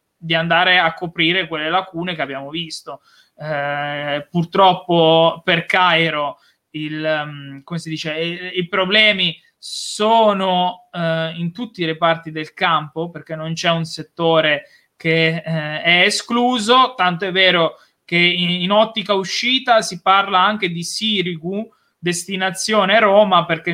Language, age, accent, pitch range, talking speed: Italian, 20-39, native, 160-185 Hz, 135 wpm